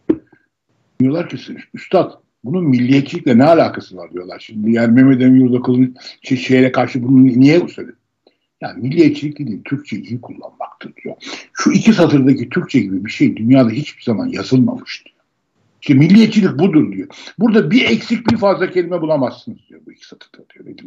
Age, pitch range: 60-79, 130-195 Hz